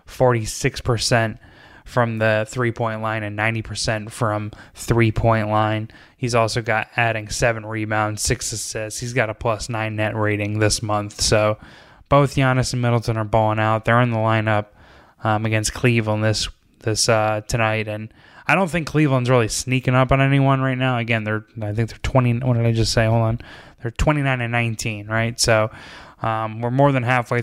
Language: English